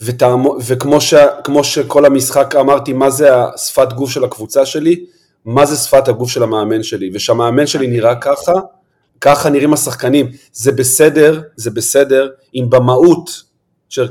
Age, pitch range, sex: 40-59, 120-145 Hz, male